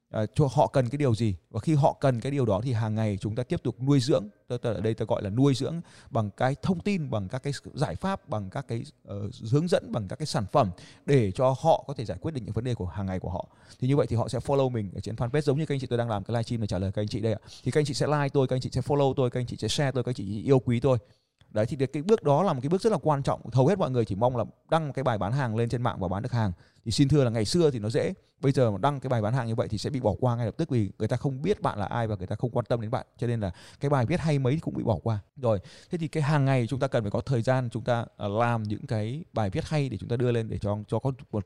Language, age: Vietnamese, 20-39